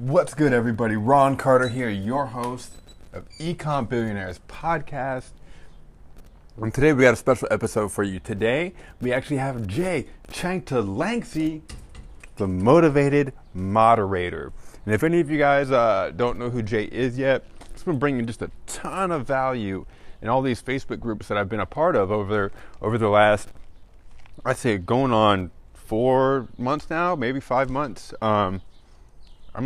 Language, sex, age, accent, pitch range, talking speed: English, male, 30-49, American, 100-135 Hz, 160 wpm